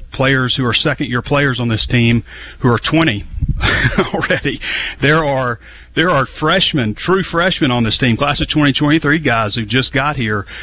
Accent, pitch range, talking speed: American, 110-135 Hz, 175 wpm